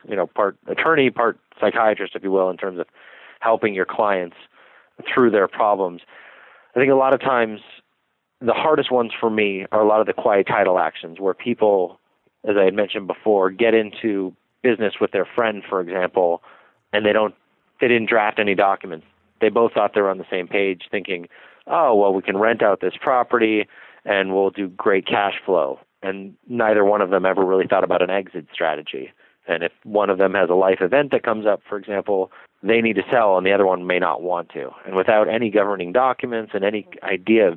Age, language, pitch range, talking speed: 30-49, English, 95-110 Hz, 210 wpm